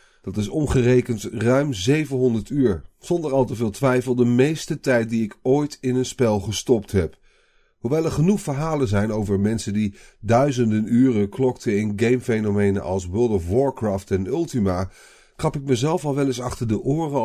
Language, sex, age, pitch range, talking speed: Dutch, male, 40-59, 105-135 Hz, 175 wpm